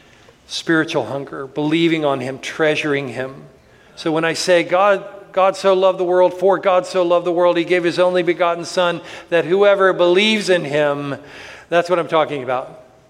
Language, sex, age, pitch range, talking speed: English, male, 50-69, 145-185 Hz, 180 wpm